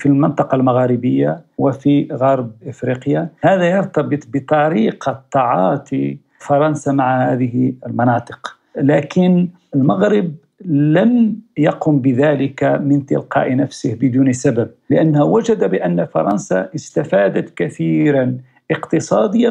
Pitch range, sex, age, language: 125-175 Hz, male, 50-69, Arabic